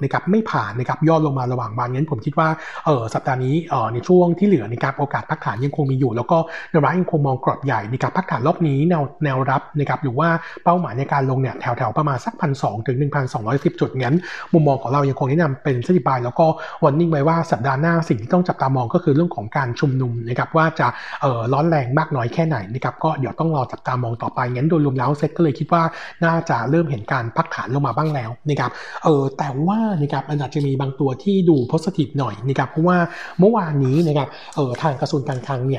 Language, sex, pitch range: Thai, male, 130-165 Hz